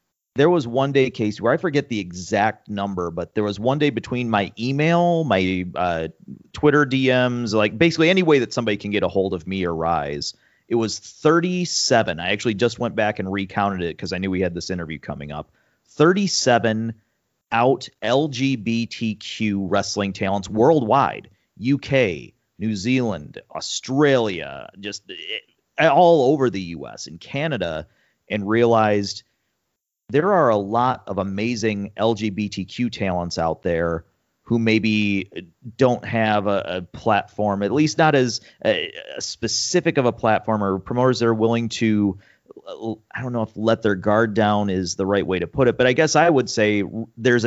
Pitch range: 100-125 Hz